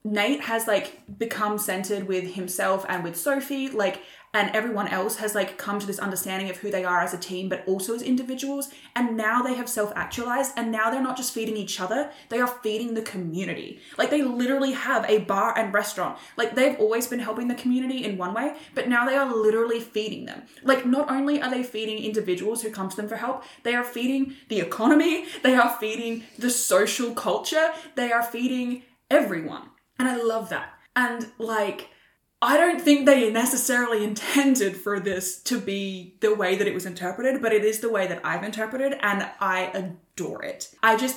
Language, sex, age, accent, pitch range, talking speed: English, female, 10-29, Australian, 200-250 Hz, 200 wpm